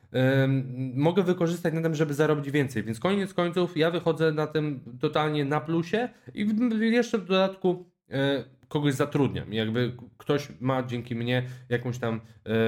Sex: male